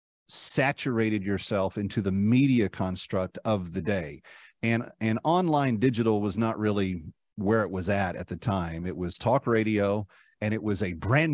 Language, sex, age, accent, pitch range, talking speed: English, male, 40-59, American, 100-130 Hz, 170 wpm